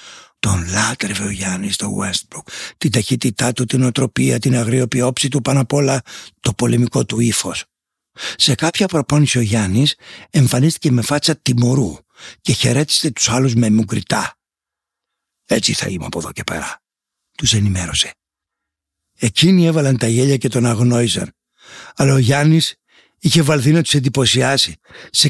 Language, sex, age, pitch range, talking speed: Greek, male, 60-79, 115-155 Hz, 140 wpm